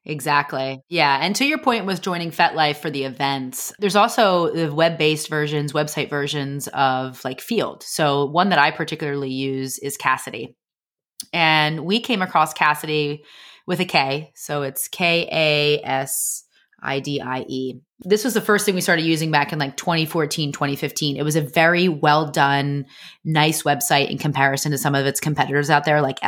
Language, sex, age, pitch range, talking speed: English, female, 30-49, 140-170 Hz, 165 wpm